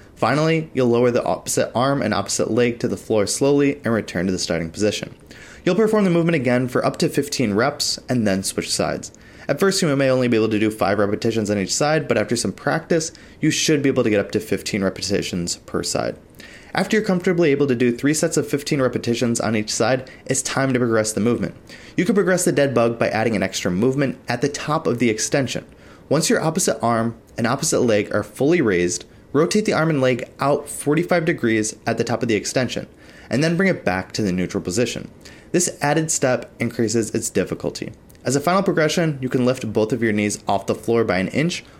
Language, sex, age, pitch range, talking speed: English, male, 30-49, 110-155 Hz, 225 wpm